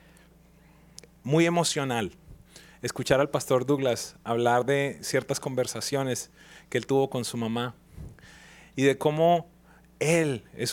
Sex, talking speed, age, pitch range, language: male, 115 wpm, 30-49, 140-190 Hz, English